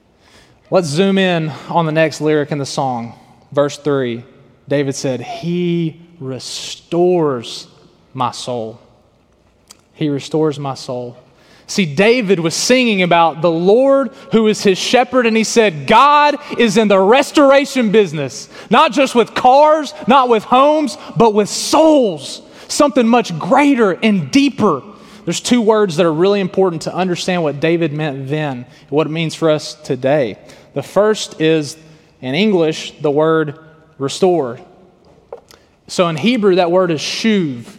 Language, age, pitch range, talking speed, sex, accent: English, 30-49, 150-220 Hz, 145 wpm, male, American